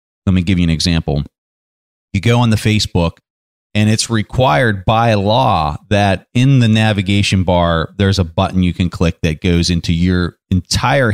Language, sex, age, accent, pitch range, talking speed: English, male, 30-49, American, 85-110 Hz, 170 wpm